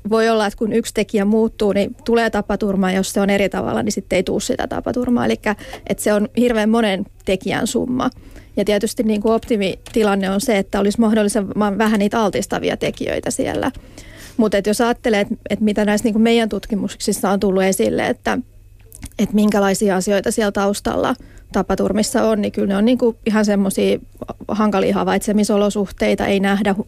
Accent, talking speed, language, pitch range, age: native, 180 wpm, Finnish, 195-220 Hz, 40-59